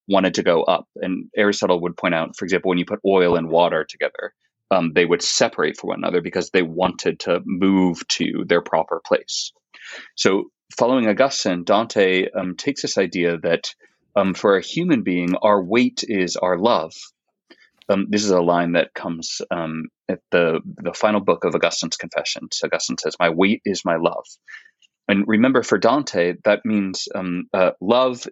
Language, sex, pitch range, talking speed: English, male, 85-105 Hz, 180 wpm